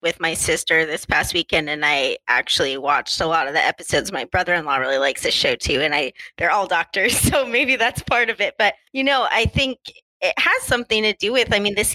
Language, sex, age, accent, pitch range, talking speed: English, female, 20-39, American, 180-220 Hz, 235 wpm